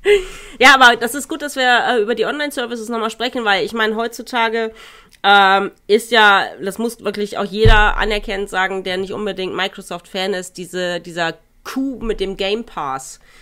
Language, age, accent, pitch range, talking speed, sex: German, 30-49, German, 165-210 Hz, 180 wpm, female